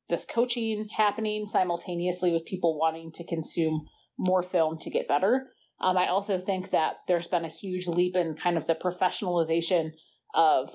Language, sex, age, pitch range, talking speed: English, female, 30-49, 165-200 Hz, 165 wpm